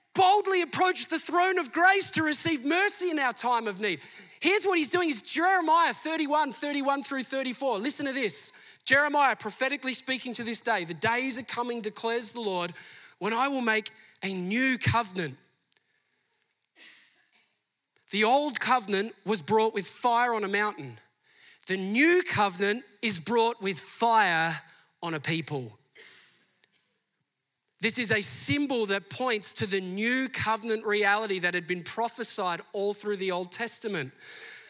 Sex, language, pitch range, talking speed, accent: male, English, 195-265 Hz, 150 wpm, Australian